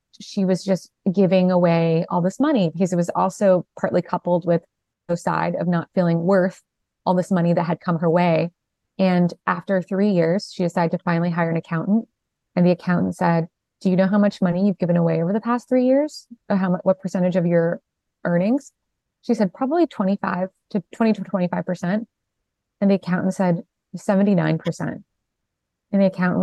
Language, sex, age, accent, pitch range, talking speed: English, female, 20-39, American, 170-200 Hz, 185 wpm